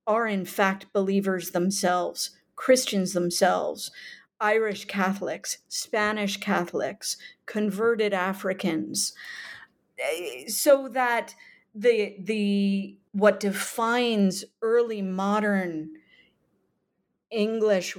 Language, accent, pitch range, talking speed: English, American, 190-230 Hz, 65 wpm